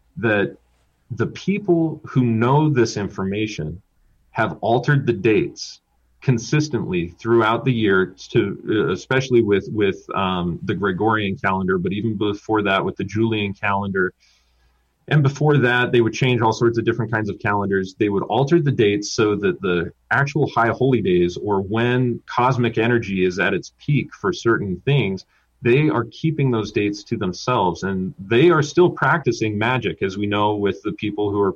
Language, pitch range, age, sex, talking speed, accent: English, 100-130 Hz, 30-49, male, 165 wpm, American